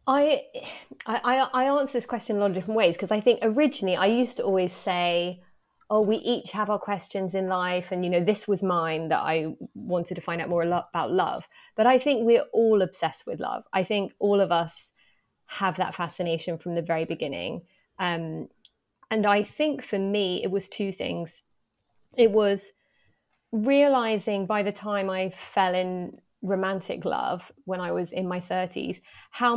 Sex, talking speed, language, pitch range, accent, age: female, 185 wpm, English, 180-215 Hz, British, 20-39